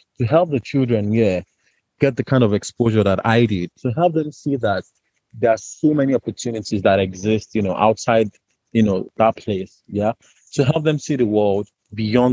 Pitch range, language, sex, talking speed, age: 105-135 Hz, English, male, 195 wpm, 30-49